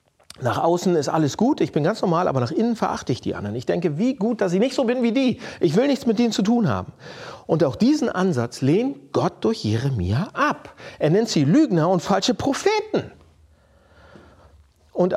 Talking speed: 205 wpm